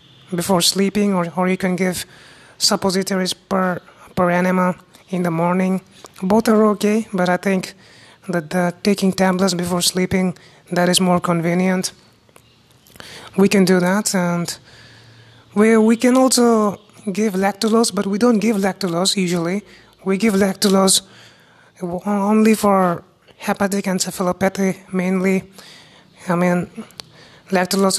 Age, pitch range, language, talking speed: 20-39, 175-200 Hz, English, 125 wpm